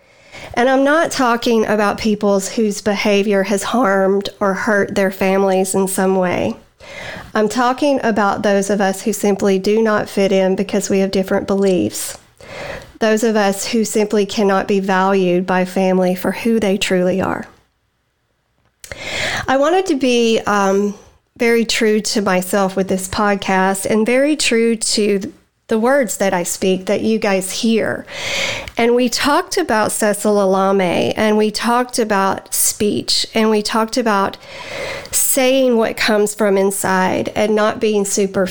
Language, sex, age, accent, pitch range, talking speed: English, female, 40-59, American, 195-225 Hz, 155 wpm